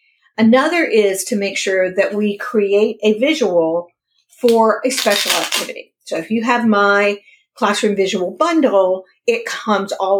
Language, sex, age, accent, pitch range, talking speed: English, female, 50-69, American, 180-230 Hz, 145 wpm